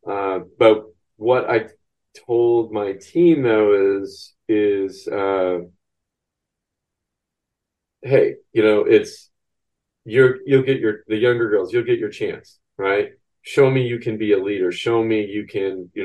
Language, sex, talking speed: English, male, 145 wpm